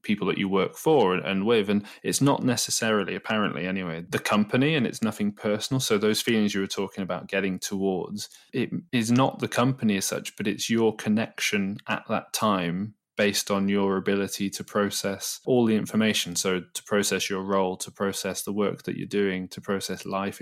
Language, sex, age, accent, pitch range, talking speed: English, male, 20-39, British, 95-110 Hz, 195 wpm